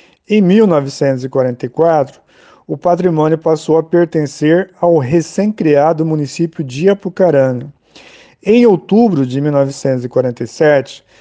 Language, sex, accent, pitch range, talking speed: Portuguese, male, Brazilian, 140-180 Hz, 85 wpm